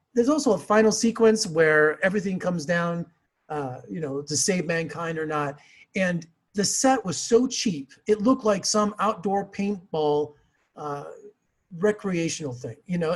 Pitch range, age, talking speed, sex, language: 170-245 Hz, 40-59, 155 wpm, male, English